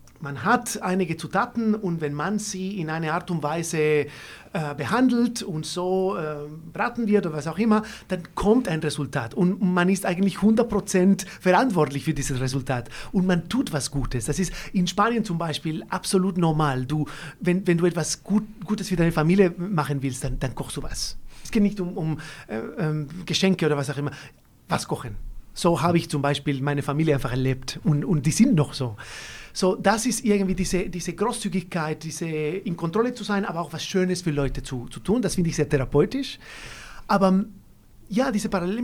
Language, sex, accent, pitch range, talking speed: German, male, German, 150-200 Hz, 195 wpm